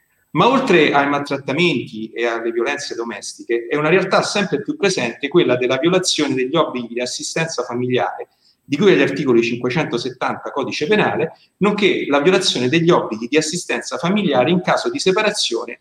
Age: 40-59